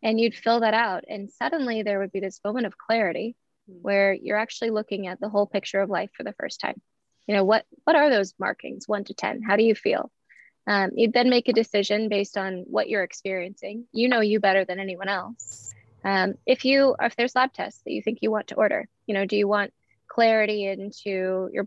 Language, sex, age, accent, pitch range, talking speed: English, female, 20-39, American, 195-235 Hz, 225 wpm